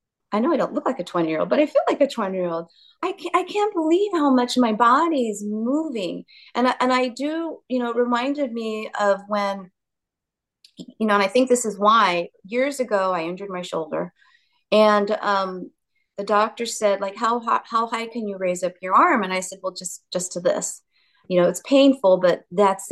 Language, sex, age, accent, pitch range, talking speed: English, female, 30-49, American, 190-270 Hz, 210 wpm